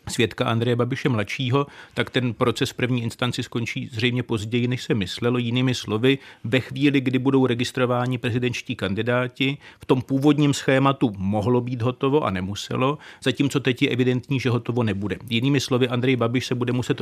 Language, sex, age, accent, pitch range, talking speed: Czech, male, 40-59, native, 120-130 Hz, 165 wpm